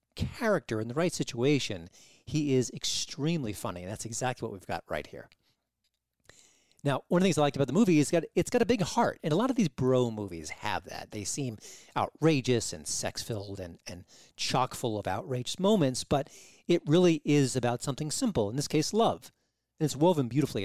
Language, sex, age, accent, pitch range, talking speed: English, male, 40-59, American, 105-150 Hz, 200 wpm